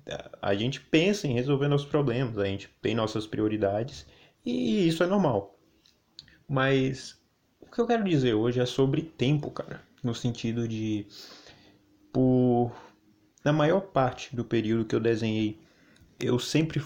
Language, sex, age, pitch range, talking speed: Portuguese, male, 20-39, 105-140 Hz, 145 wpm